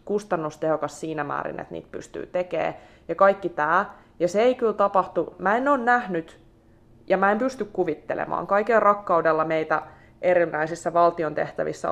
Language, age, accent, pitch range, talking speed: Finnish, 20-39, native, 150-185 Hz, 150 wpm